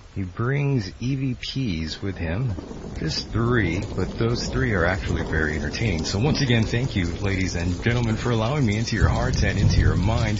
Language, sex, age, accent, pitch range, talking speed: English, male, 40-59, American, 90-120 Hz, 185 wpm